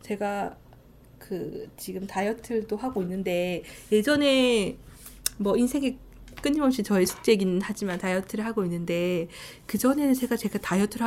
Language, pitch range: Korean, 190-265 Hz